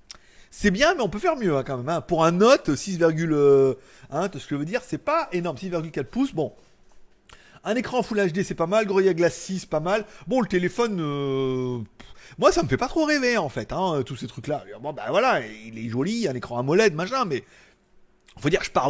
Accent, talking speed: French, 240 wpm